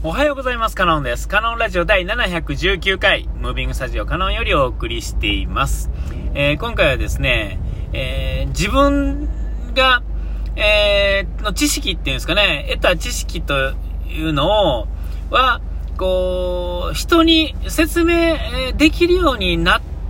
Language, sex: Japanese, male